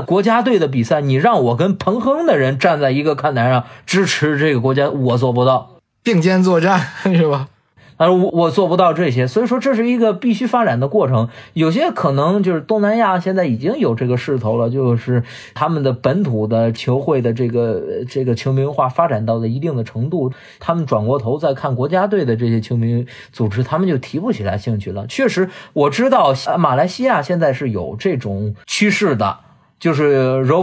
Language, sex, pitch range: Chinese, male, 115-170 Hz